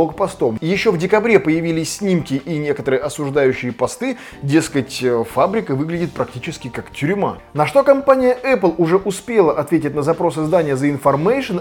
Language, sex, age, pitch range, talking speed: Russian, male, 20-39, 125-165 Hz, 145 wpm